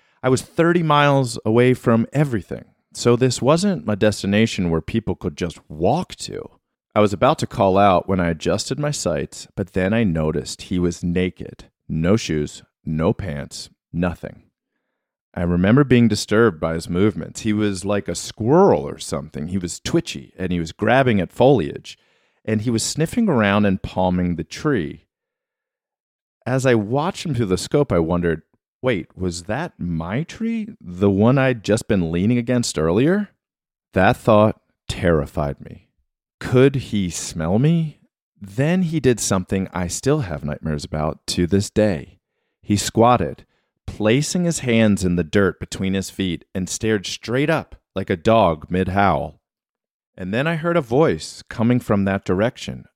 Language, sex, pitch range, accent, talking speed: English, male, 90-125 Hz, American, 165 wpm